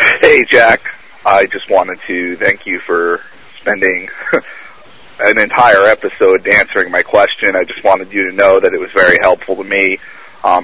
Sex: male